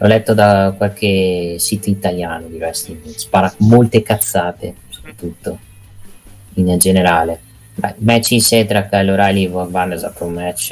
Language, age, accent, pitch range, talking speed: Italian, 20-39, native, 85-100 Hz, 155 wpm